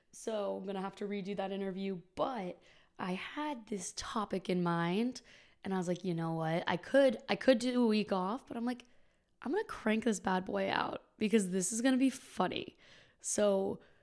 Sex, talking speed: female, 215 wpm